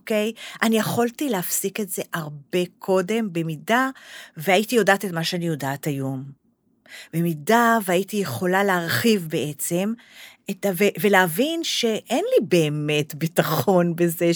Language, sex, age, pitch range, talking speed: Hebrew, female, 40-59, 175-255 Hz, 120 wpm